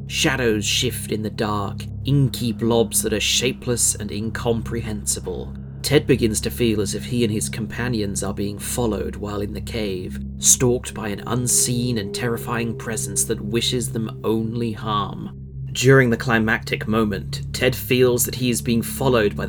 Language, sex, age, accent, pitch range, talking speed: English, male, 30-49, British, 100-120 Hz, 165 wpm